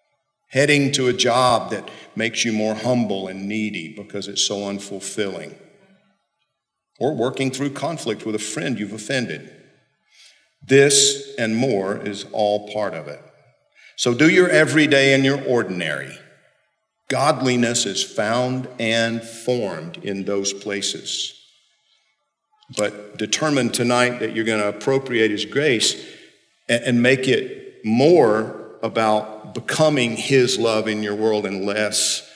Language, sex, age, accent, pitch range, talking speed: English, male, 50-69, American, 105-140 Hz, 130 wpm